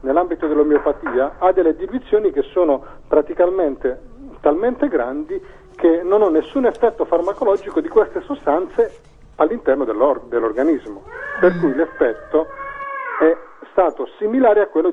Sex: male